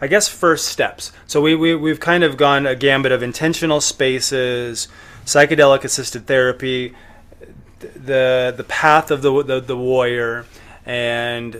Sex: male